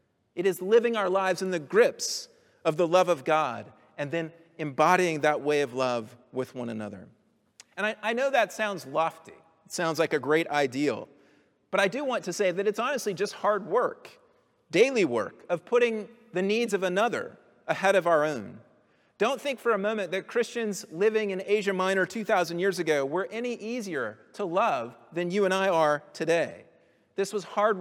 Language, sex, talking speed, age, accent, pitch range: English, male, 190 wpm, 30-49, American, 160-210 Hz